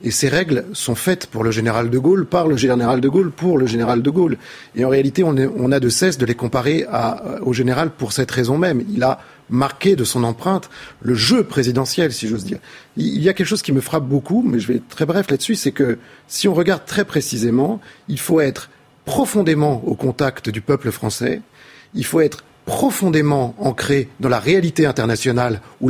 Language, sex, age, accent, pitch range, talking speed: French, male, 40-59, French, 125-170 Hz, 215 wpm